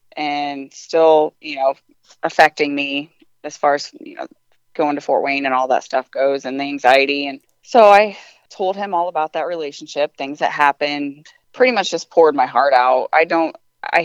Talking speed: 190 wpm